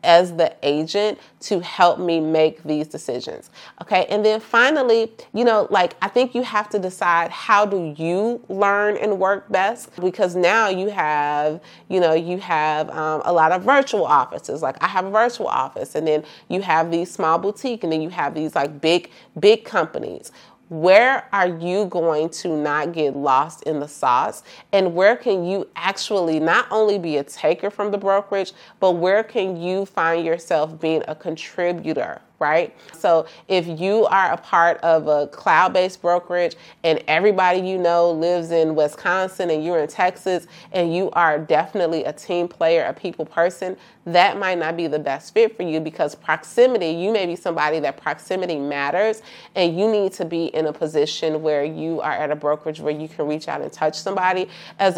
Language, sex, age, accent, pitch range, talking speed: English, female, 30-49, American, 160-190 Hz, 190 wpm